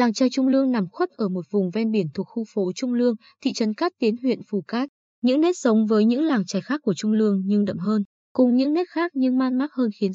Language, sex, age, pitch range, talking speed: Vietnamese, female, 20-39, 190-255 Hz, 270 wpm